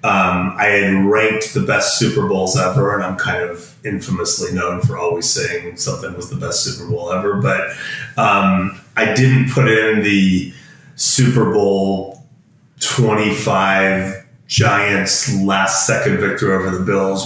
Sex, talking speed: male, 145 wpm